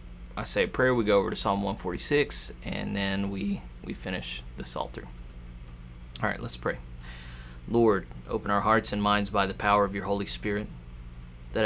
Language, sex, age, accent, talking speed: English, male, 30-49, American, 180 wpm